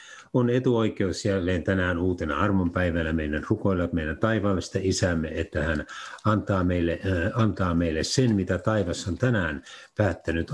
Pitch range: 85-110 Hz